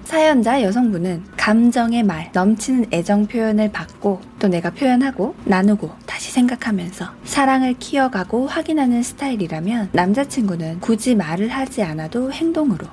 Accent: native